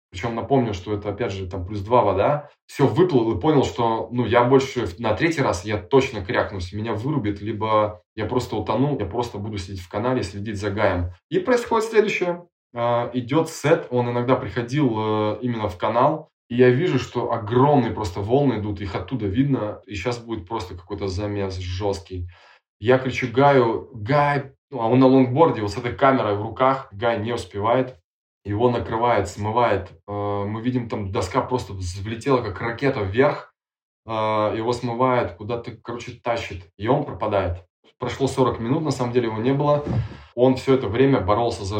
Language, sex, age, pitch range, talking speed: Russian, male, 20-39, 105-130 Hz, 170 wpm